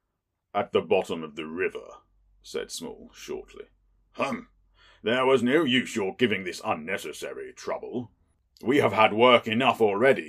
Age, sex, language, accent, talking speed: 40-59, male, English, British, 145 wpm